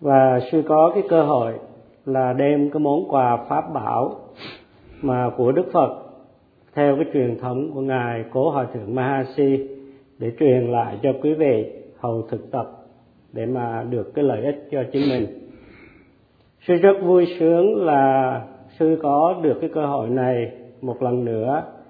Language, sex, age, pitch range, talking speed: Vietnamese, male, 50-69, 125-155 Hz, 165 wpm